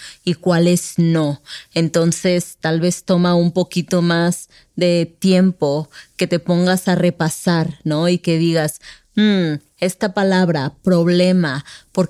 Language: English